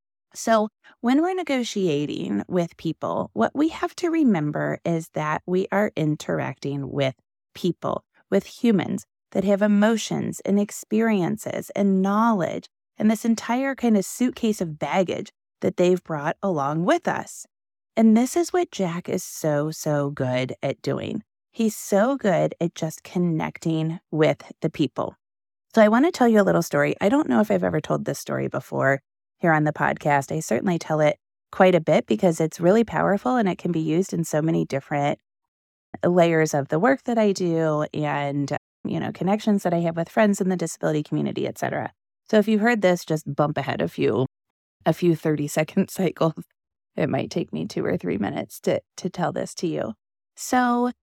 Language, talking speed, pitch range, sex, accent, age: English, 185 wpm, 155-220 Hz, female, American, 30-49